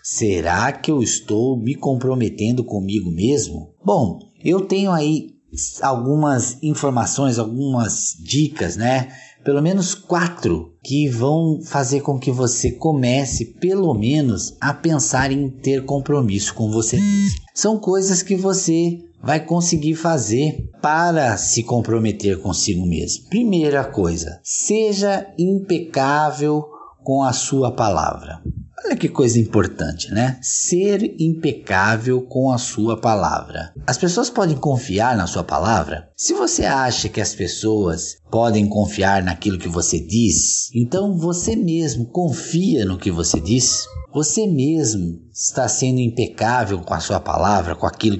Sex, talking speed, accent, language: male, 130 wpm, Brazilian, Portuguese